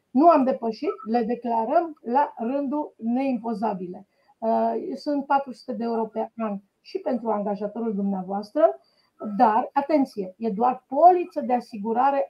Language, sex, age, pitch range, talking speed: Romanian, female, 40-59, 215-270 Hz, 120 wpm